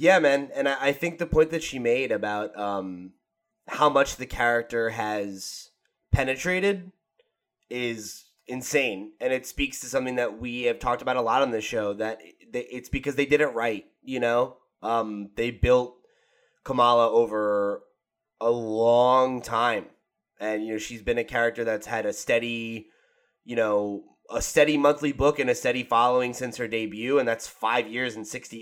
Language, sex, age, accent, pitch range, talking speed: English, male, 20-39, American, 110-135 Hz, 170 wpm